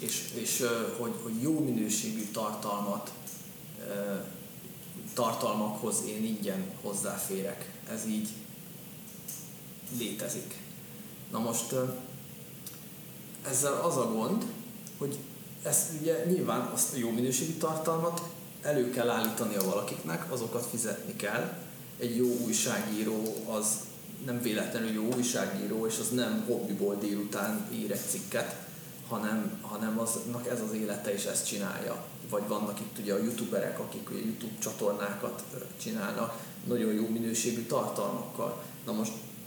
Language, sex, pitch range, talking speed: Hungarian, male, 110-170 Hz, 120 wpm